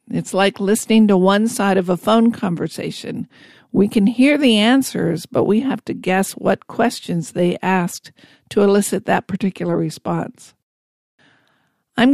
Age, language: 50-69, English